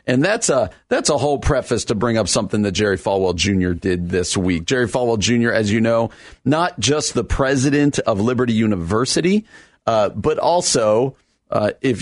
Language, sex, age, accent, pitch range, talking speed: English, male, 40-59, American, 100-125 Hz, 180 wpm